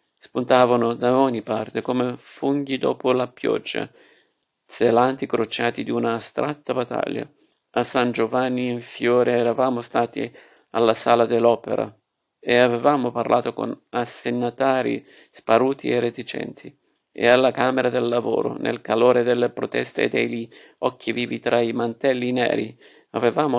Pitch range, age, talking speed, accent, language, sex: 120-130 Hz, 50-69, 130 wpm, native, Italian, male